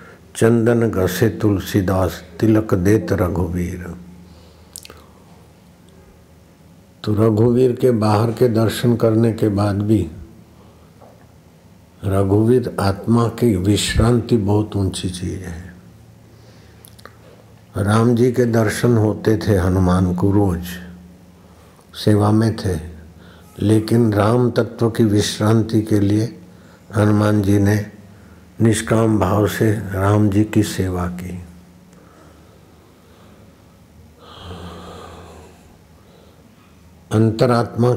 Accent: native